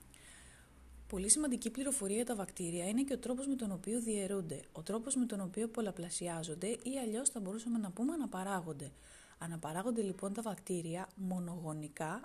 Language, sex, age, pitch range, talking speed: Greek, female, 30-49, 175-235 Hz, 155 wpm